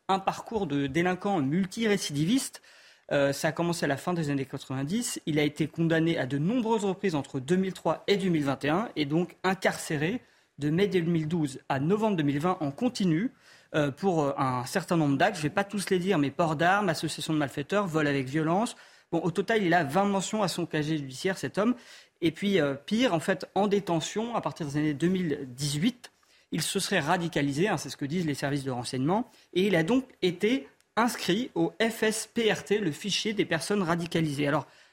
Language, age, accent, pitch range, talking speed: French, 40-59, French, 150-205 Hz, 195 wpm